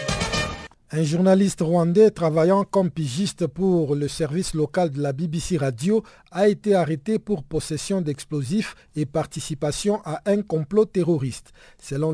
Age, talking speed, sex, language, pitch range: 50-69, 135 wpm, male, French, 145-185 Hz